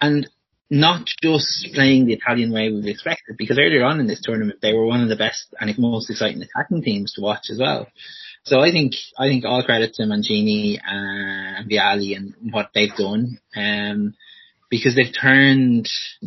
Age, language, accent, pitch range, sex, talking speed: 30-49, English, Irish, 105-135 Hz, male, 185 wpm